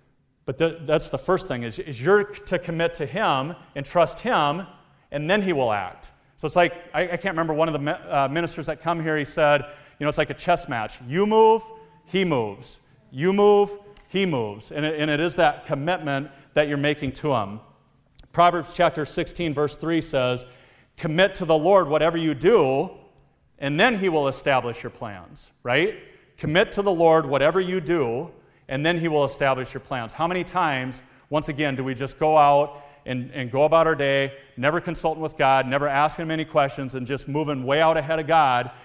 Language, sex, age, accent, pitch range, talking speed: English, male, 40-59, American, 135-165 Hz, 195 wpm